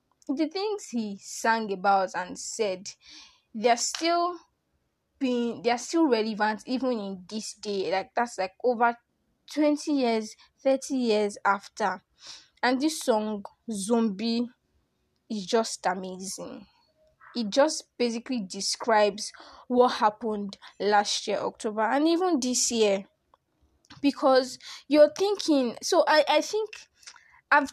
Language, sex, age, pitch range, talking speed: English, female, 10-29, 200-265 Hz, 115 wpm